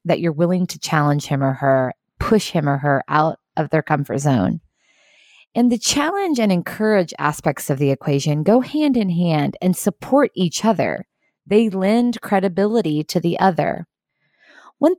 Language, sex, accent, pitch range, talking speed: English, female, American, 155-215 Hz, 165 wpm